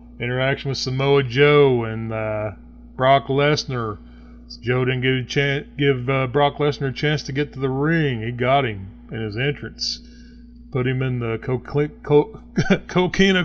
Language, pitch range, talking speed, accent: English, 110-145 Hz, 145 wpm, American